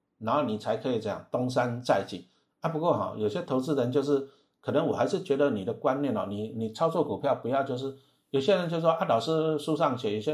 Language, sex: Chinese, male